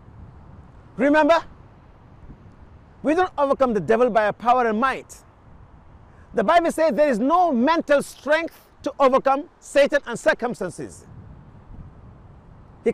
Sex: male